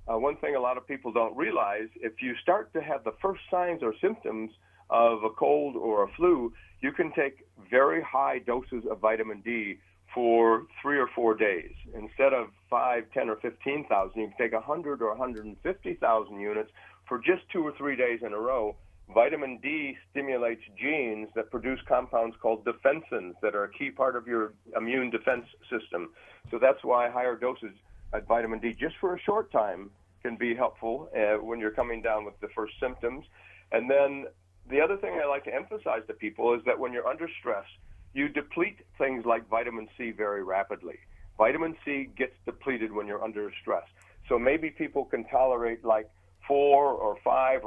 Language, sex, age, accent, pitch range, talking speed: English, male, 50-69, American, 110-140 Hz, 190 wpm